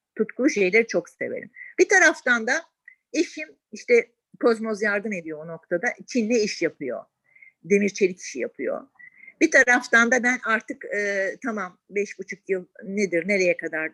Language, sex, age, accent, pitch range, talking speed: Turkish, female, 50-69, native, 180-240 Hz, 145 wpm